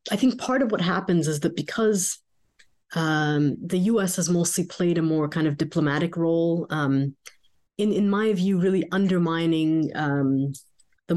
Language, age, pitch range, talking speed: English, 30-49, 145-180 Hz, 160 wpm